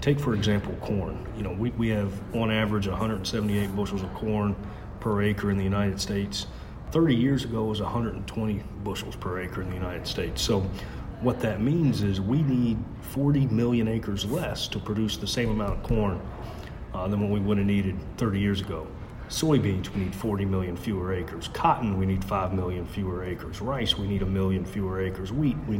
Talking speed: 195 wpm